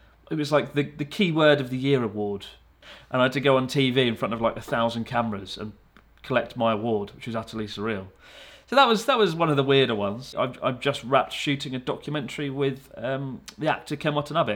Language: English